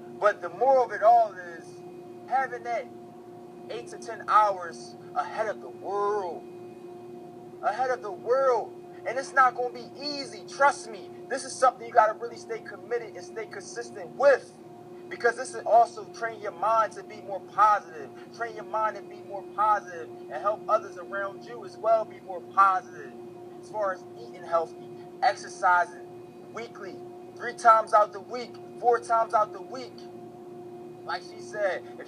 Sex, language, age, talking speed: male, English, 20-39, 170 wpm